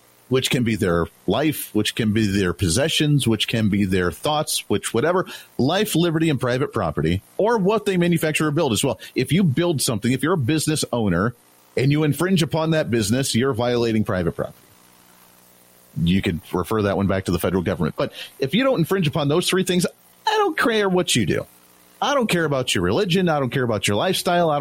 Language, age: English, 40-59